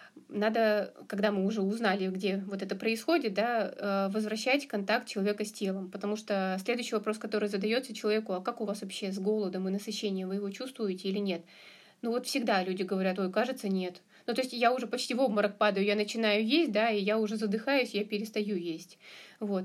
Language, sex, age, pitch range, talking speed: Russian, female, 30-49, 200-240 Hz, 200 wpm